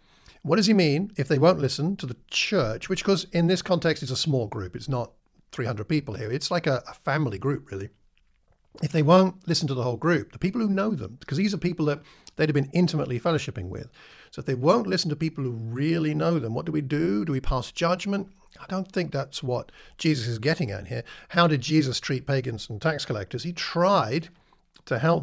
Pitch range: 125-175 Hz